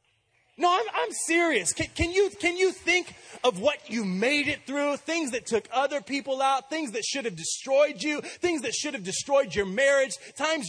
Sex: male